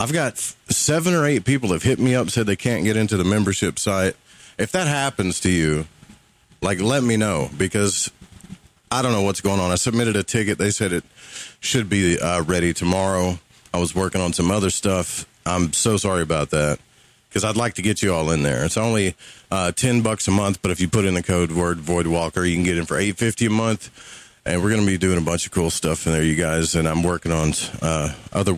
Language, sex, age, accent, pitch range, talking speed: English, male, 30-49, American, 90-110 Hz, 235 wpm